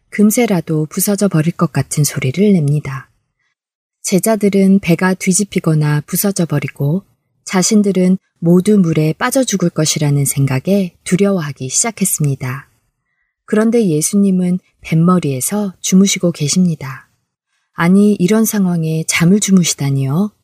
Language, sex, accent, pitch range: Korean, female, native, 150-200 Hz